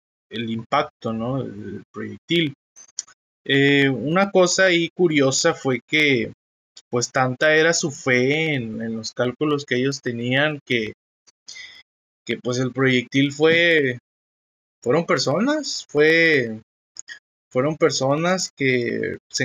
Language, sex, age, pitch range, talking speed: Spanish, male, 20-39, 120-160 Hz, 110 wpm